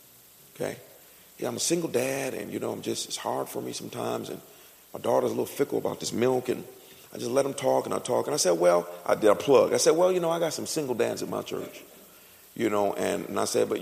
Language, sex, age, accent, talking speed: English, male, 50-69, American, 270 wpm